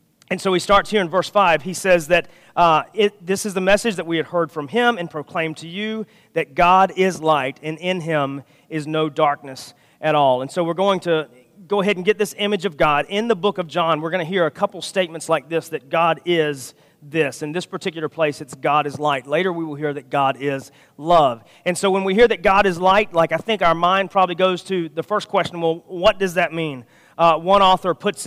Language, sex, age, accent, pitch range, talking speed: English, male, 40-59, American, 155-195 Hz, 240 wpm